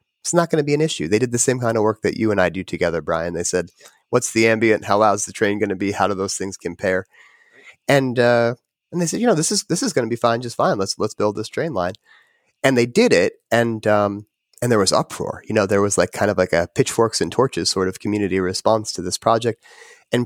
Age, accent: 30-49, American